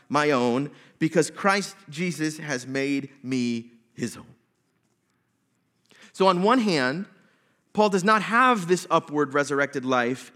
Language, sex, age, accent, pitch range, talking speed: English, male, 30-49, American, 140-210 Hz, 125 wpm